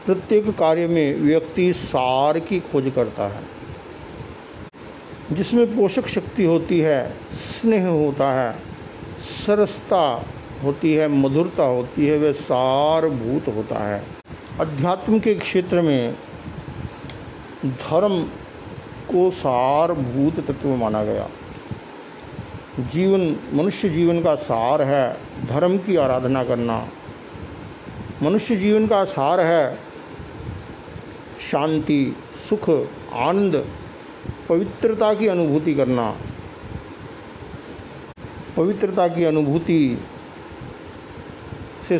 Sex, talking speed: male, 90 wpm